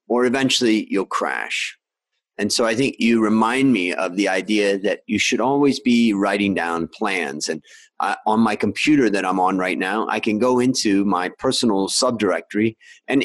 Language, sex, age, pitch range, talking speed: English, male, 30-49, 105-155 Hz, 180 wpm